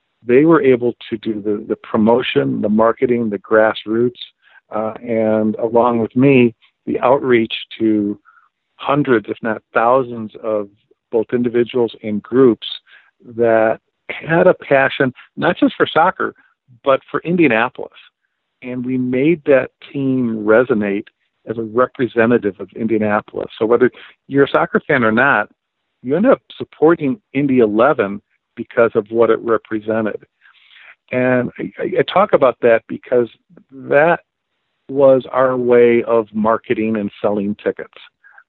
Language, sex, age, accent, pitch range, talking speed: English, male, 50-69, American, 110-125 Hz, 135 wpm